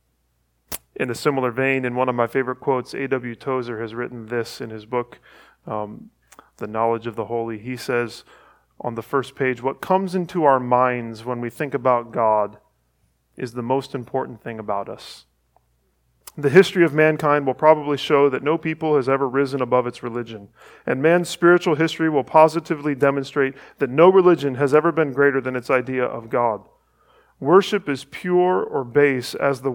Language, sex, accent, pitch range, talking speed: English, male, American, 120-155 Hz, 180 wpm